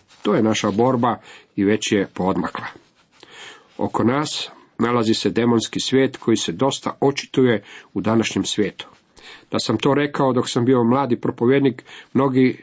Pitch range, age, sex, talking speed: 110-135 Hz, 50-69, male, 145 wpm